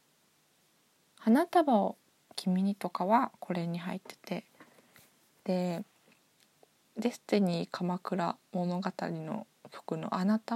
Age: 20-39